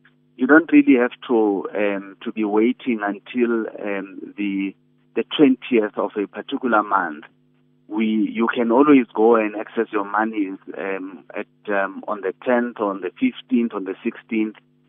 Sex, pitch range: male, 100-125 Hz